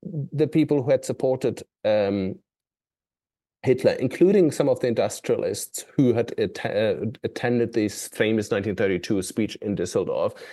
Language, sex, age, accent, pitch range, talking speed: English, male, 30-49, German, 115-150 Hz, 120 wpm